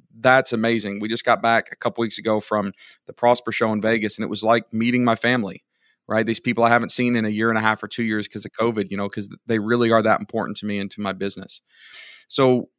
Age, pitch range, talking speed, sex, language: 40-59, 105-120 Hz, 265 wpm, male, English